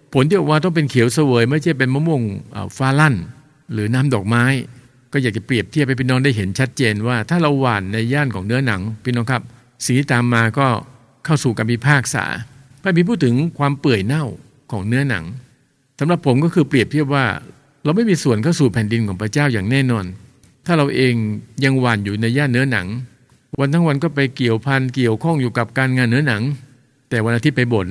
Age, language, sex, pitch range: 60-79, English, male, 115-145 Hz